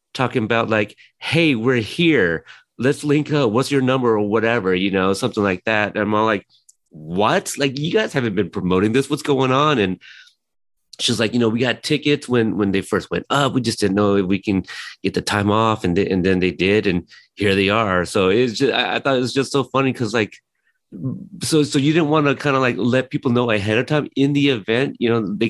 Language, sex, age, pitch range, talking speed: English, male, 30-49, 95-130 Hz, 235 wpm